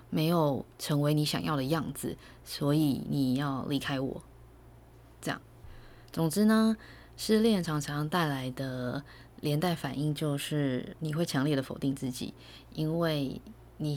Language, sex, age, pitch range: Chinese, female, 20-39, 130-160 Hz